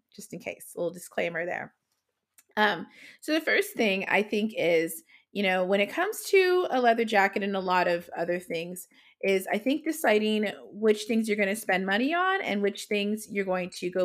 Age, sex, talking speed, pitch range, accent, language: 30-49, female, 210 wpm, 185-230 Hz, American, English